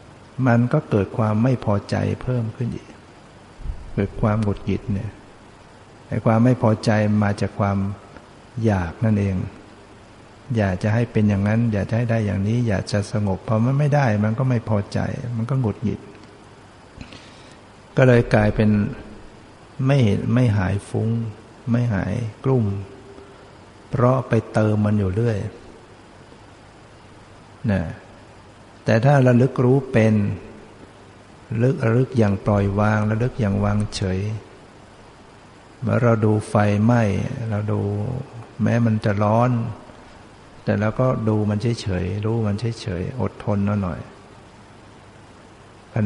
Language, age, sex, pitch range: Thai, 60-79, male, 100-115 Hz